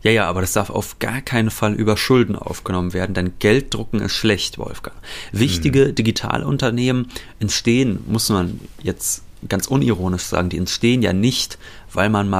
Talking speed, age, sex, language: 165 wpm, 30-49, male, German